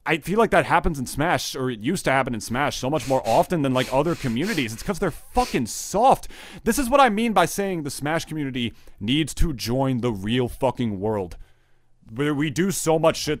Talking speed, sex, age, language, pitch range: 225 wpm, male, 30-49, English, 110-140 Hz